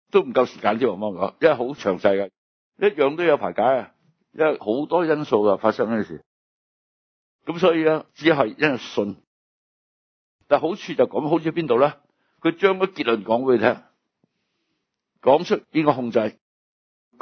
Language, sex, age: Chinese, male, 60-79